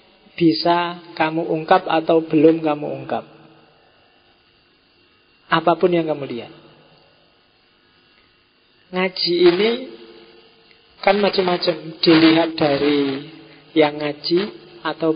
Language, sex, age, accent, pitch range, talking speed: Indonesian, male, 40-59, native, 150-175 Hz, 80 wpm